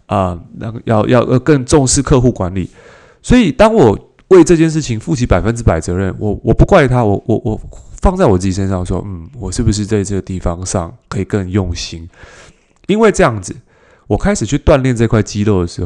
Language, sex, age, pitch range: Chinese, male, 20-39, 95-145 Hz